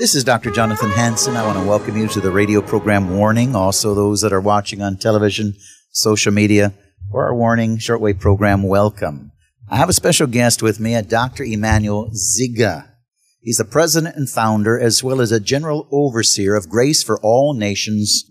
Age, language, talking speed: 50-69, English, 185 wpm